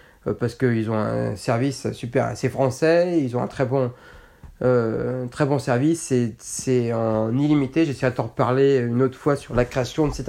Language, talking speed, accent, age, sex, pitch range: French, 190 wpm, French, 30-49, male, 120-155 Hz